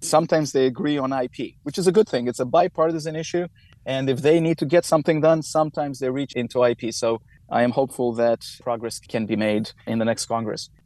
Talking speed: 220 wpm